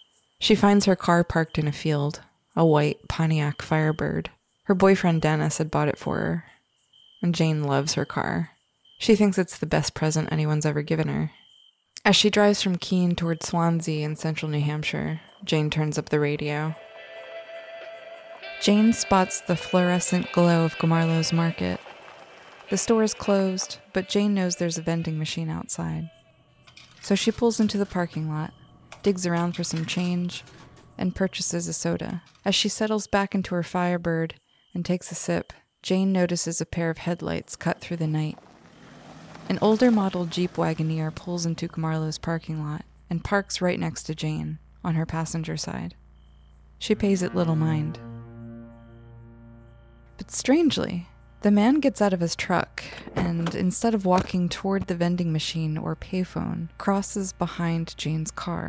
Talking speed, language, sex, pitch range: 160 wpm, English, female, 155-190 Hz